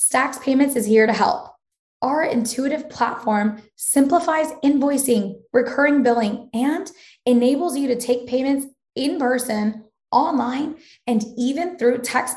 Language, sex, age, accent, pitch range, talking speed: English, female, 10-29, American, 225-275 Hz, 125 wpm